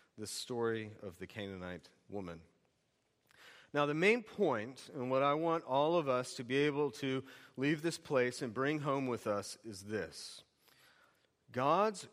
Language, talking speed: English, 160 wpm